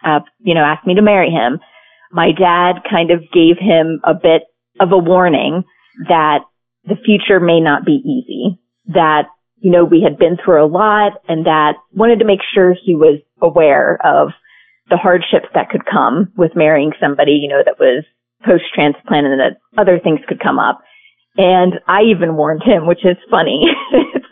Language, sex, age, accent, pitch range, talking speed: English, female, 30-49, American, 155-200 Hz, 185 wpm